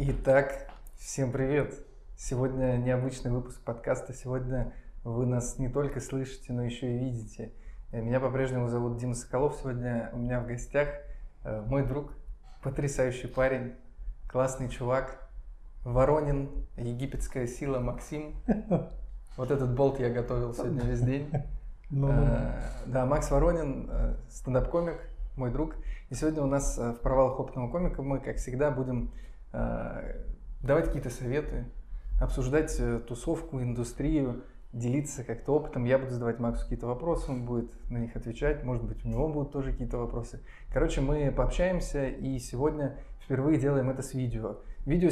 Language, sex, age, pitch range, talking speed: Russian, male, 20-39, 120-140 Hz, 135 wpm